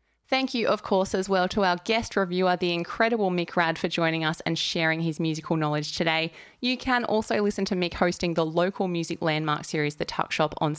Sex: female